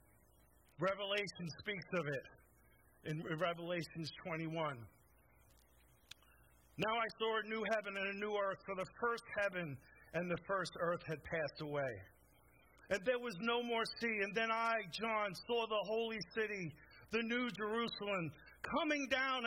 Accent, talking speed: American, 145 wpm